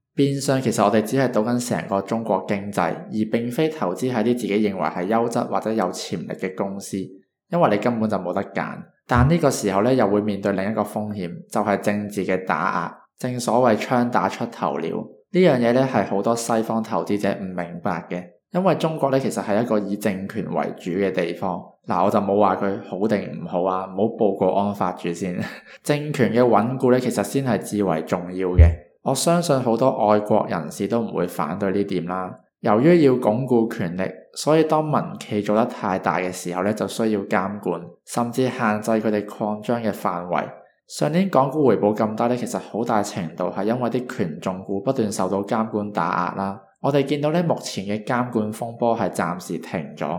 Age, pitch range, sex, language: 20-39, 95-125 Hz, male, Chinese